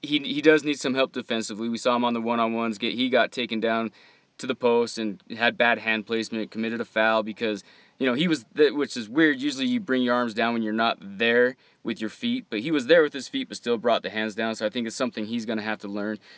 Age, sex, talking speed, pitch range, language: 20-39, male, 275 wpm, 110-125 Hz, English